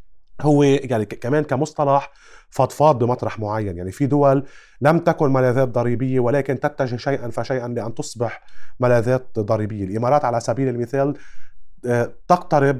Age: 30-49